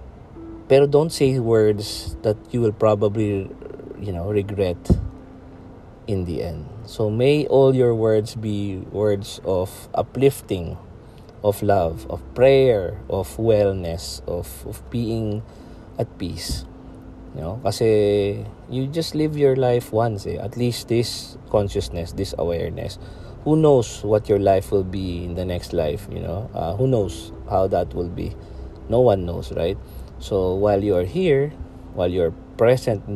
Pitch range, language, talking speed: 95-130 Hz, Filipino, 150 wpm